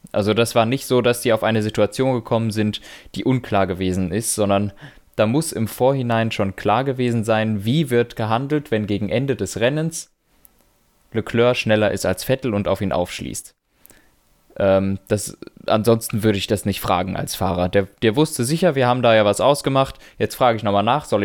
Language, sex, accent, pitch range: German, male, German, 105-130 Hz